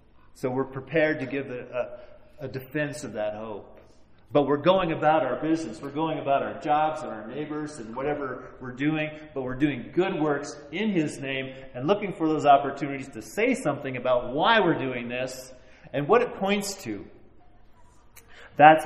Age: 40-59